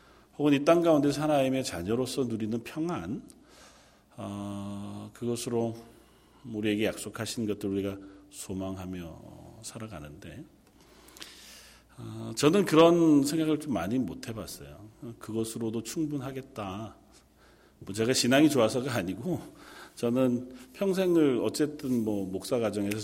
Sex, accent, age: male, native, 40-59